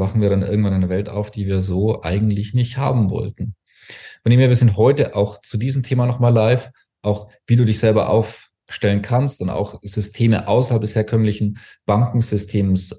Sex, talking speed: male, 185 wpm